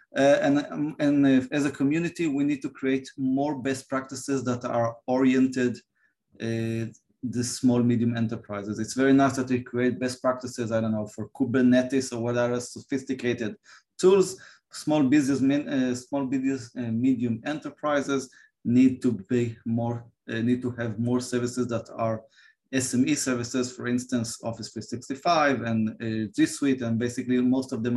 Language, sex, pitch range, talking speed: English, male, 120-135 Hz, 160 wpm